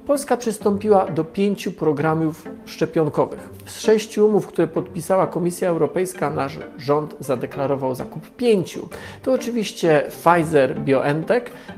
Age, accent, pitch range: 40-59, native, 145-200 Hz